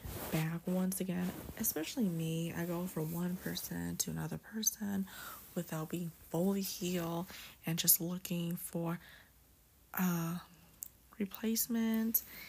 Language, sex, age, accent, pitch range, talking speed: English, female, 20-39, American, 170-200 Hz, 110 wpm